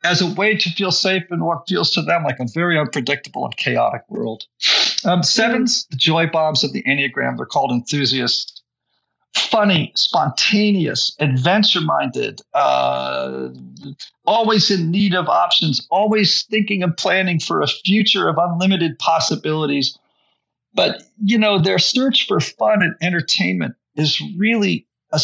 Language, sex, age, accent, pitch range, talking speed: English, male, 50-69, American, 125-205 Hz, 140 wpm